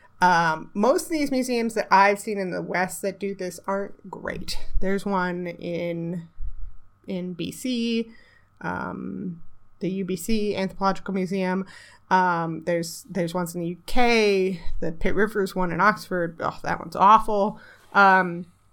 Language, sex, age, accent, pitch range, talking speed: English, female, 30-49, American, 180-220 Hz, 140 wpm